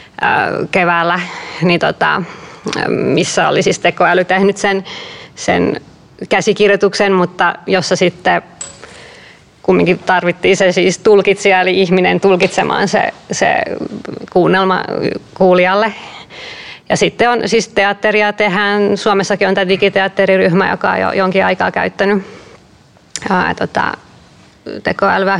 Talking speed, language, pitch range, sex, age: 105 wpm, Finnish, 185-205 Hz, female, 20-39